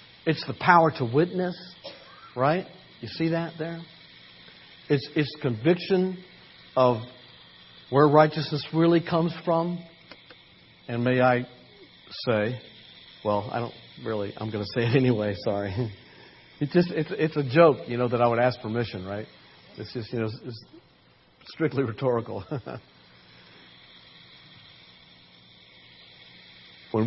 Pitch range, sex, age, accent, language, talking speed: 110-160 Hz, male, 60-79, American, English, 125 wpm